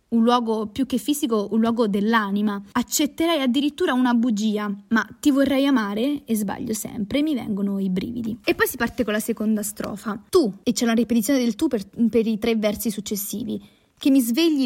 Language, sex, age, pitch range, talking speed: Italian, female, 20-39, 210-275 Hz, 190 wpm